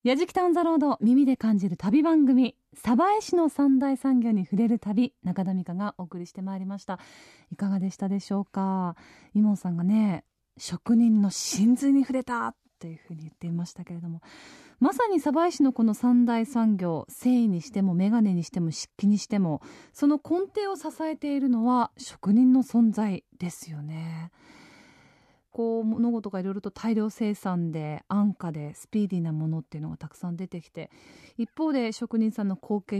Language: Japanese